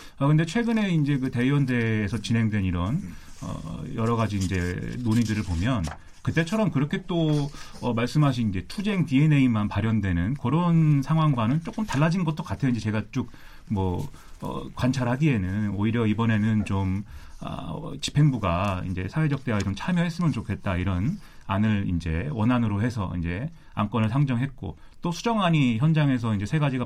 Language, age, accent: Korean, 30-49, native